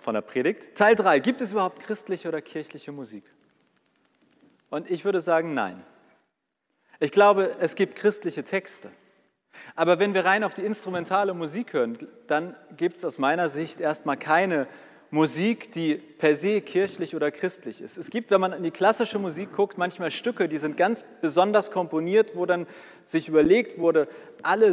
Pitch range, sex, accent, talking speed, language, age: 145-195 Hz, male, German, 170 wpm, German, 40-59